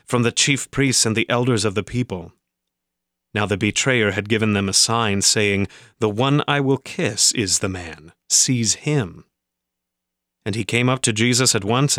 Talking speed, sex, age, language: 185 wpm, male, 30-49, English